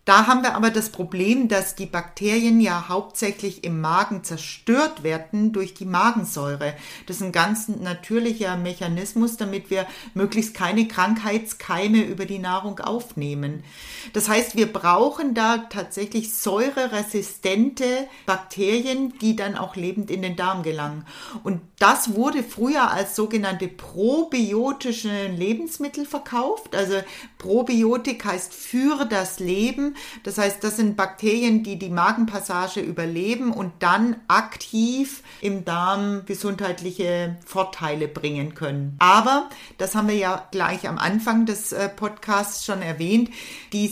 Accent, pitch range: German, 180-225 Hz